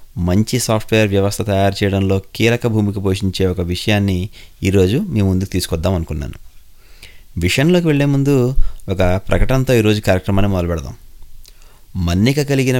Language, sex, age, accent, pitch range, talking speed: English, male, 30-49, Indian, 90-120 Hz, 115 wpm